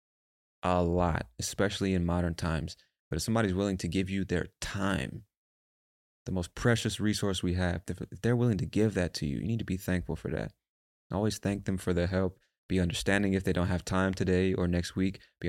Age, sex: 20-39, male